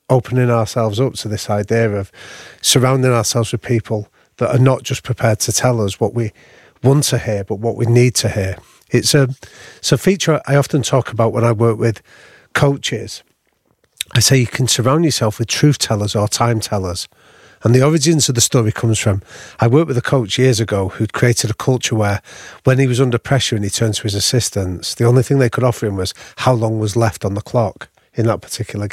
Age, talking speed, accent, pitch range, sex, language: 40-59, 215 wpm, British, 110-130 Hz, male, English